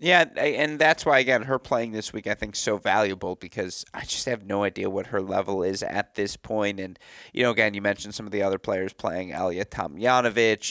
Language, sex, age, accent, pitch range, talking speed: English, male, 30-49, American, 100-125 Hz, 230 wpm